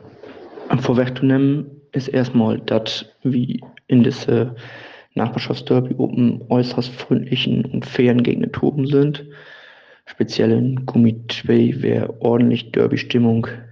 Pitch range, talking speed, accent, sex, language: 115-130 Hz, 105 wpm, German, male, German